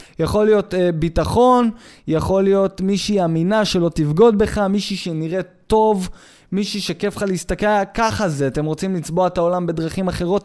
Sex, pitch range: male, 160-210 Hz